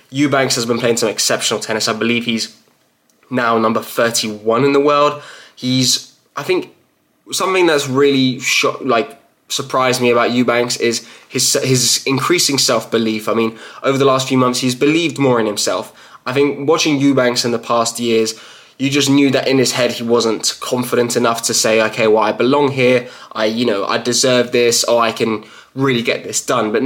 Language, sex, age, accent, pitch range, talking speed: English, male, 20-39, British, 120-135 Hz, 190 wpm